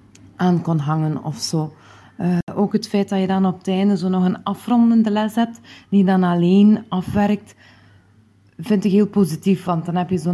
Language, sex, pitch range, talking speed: Dutch, female, 180-230 Hz, 190 wpm